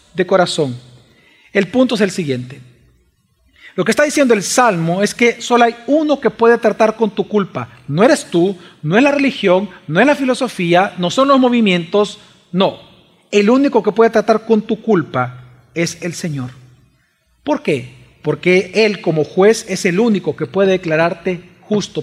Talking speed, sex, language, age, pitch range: 175 wpm, male, Spanish, 40-59, 175-245 Hz